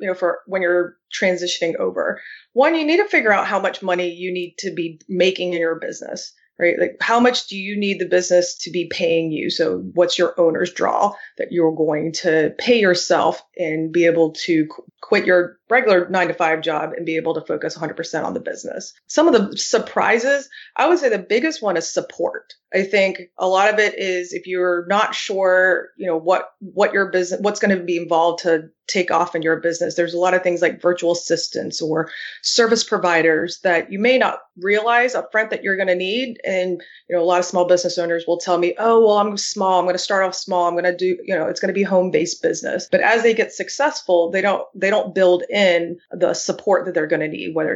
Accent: American